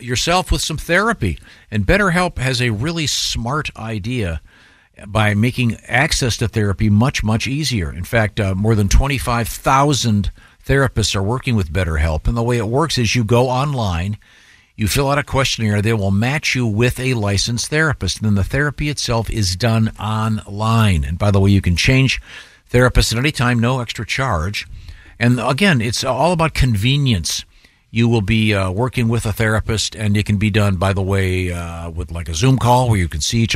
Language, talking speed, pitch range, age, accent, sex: English, 195 wpm, 100-125 Hz, 50-69, American, male